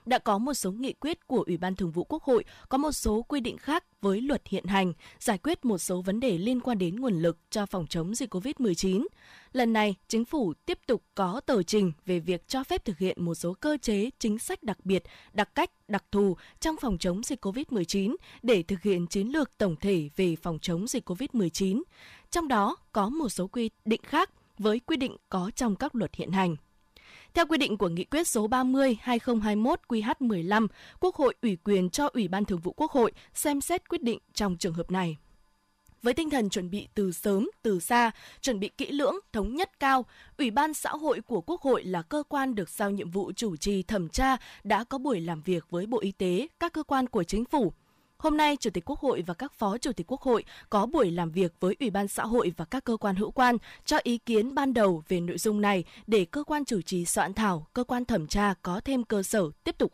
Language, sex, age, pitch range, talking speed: Vietnamese, female, 20-39, 190-260 Hz, 230 wpm